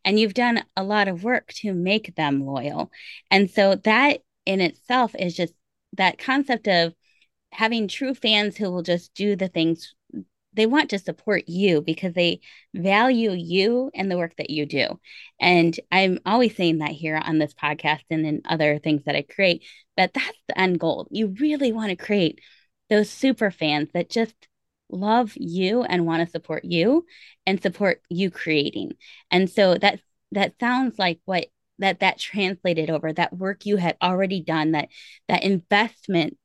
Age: 20-39